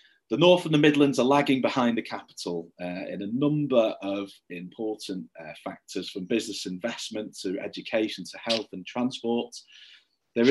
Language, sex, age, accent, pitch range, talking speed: English, male, 30-49, British, 110-140 Hz, 160 wpm